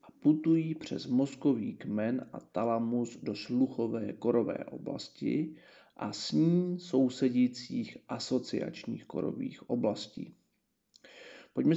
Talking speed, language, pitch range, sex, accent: 90 wpm, Czech, 130-175 Hz, male, native